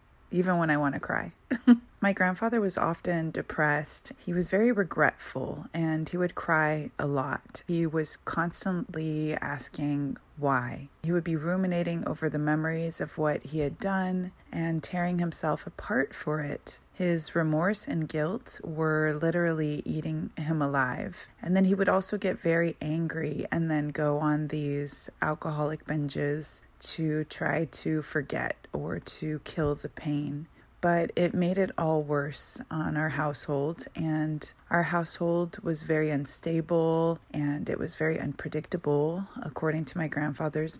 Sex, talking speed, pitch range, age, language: female, 150 wpm, 150-175 Hz, 20-39, English